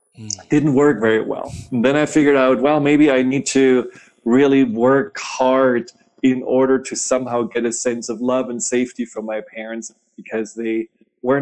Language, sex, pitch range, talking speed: English, male, 120-135 Hz, 180 wpm